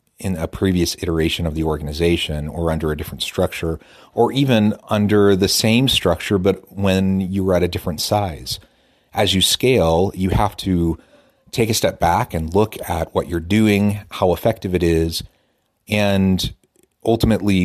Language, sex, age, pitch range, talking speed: English, male, 30-49, 80-100 Hz, 165 wpm